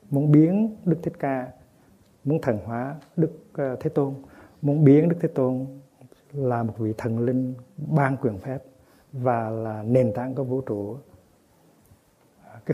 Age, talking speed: 60-79, 150 wpm